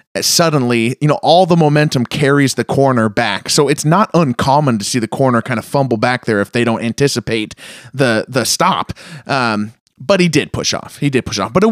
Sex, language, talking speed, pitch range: male, English, 220 wpm, 125-185 Hz